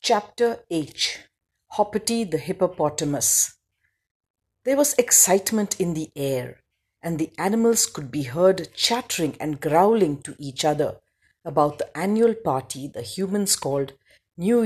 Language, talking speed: English, 125 wpm